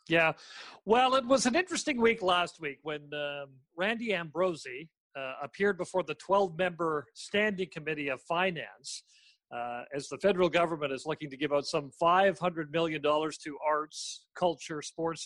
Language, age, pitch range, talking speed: English, 40-59, 145-185 Hz, 155 wpm